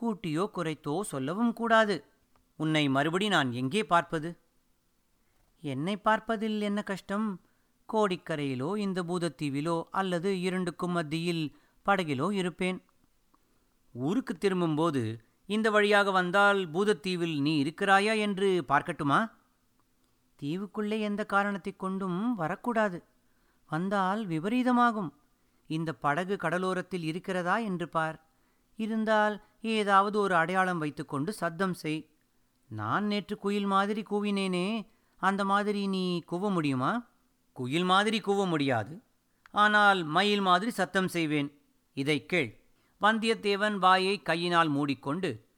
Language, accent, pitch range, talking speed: Tamil, native, 155-205 Hz, 100 wpm